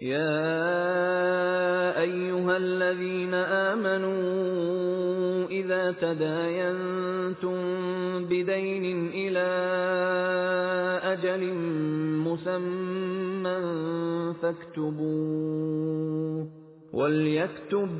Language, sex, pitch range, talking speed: Persian, male, 160-185 Hz, 40 wpm